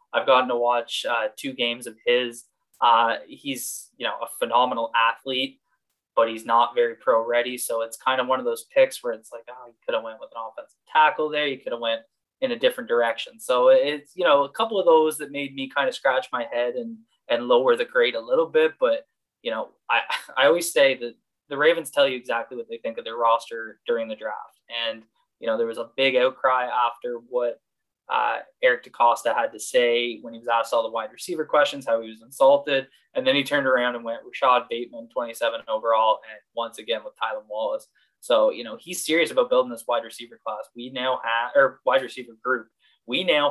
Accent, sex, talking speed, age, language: American, male, 225 wpm, 20-39, English